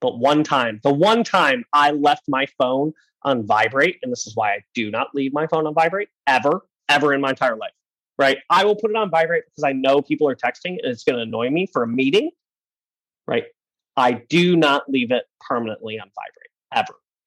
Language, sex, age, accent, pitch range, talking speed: English, male, 30-49, American, 135-215 Hz, 215 wpm